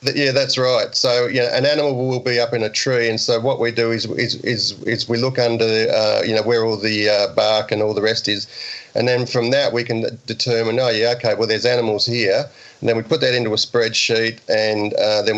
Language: English